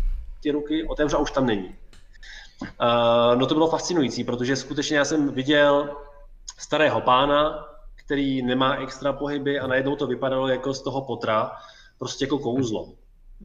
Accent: native